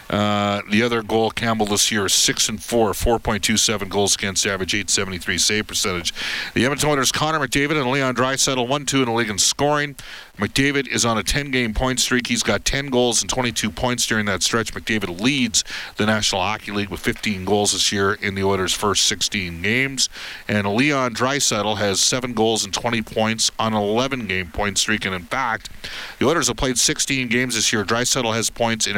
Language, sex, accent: English, male, American